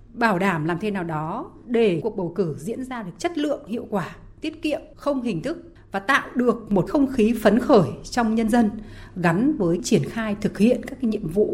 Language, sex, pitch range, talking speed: Vietnamese, female, 180-265 Hz, 225 wpm